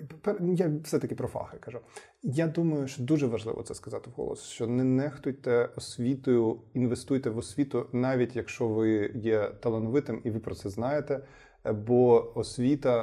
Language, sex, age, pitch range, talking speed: Ukrainian, male, 20-39, 110-125 Hz, 150 wpm